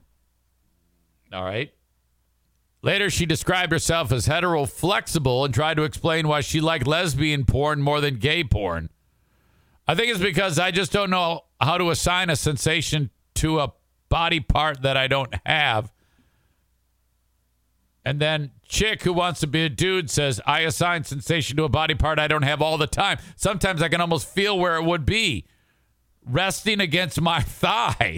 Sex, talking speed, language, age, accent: male, 165 wpm, English, 50-69, American